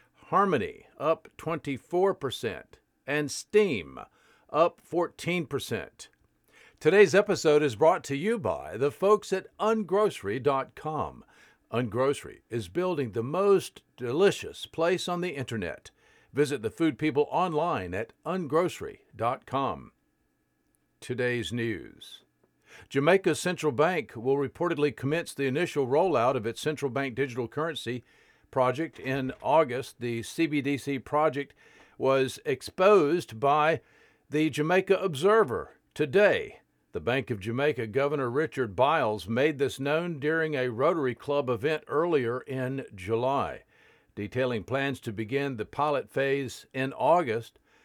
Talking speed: 115 wpm